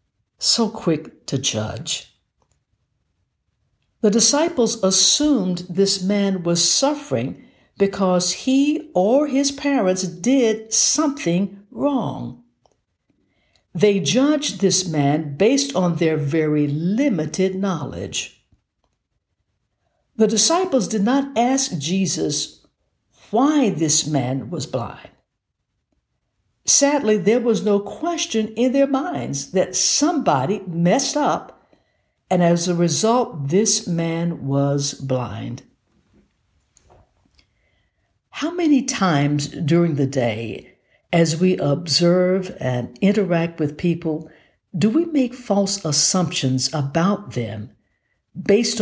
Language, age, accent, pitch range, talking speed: English, 60-79, American, 145-220 Hz, 100 wpm